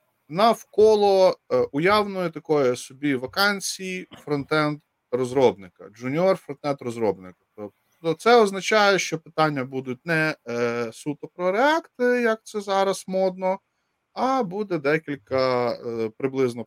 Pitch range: 130-195 Hz